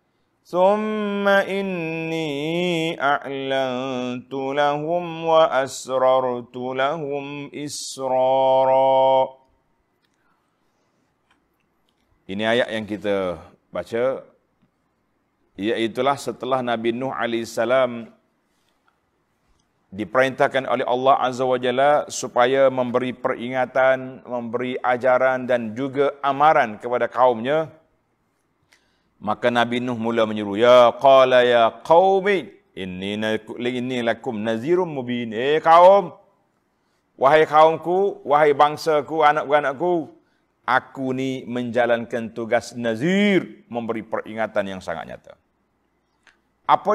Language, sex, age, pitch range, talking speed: Malay, male, 40-59, 120-155 Hz, 85 wpm